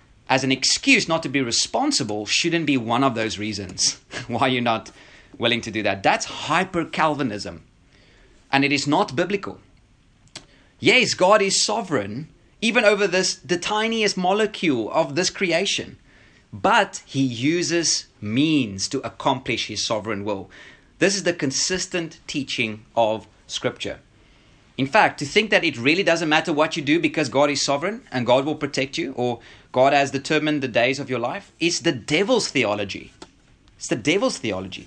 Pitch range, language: 120-175 Hz, English